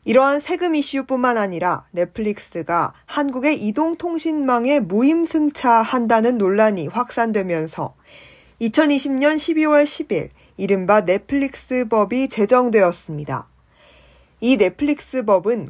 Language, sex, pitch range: Korean, female, 200-275 Hz